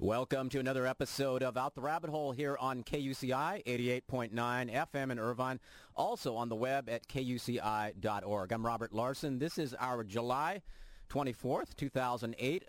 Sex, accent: male, American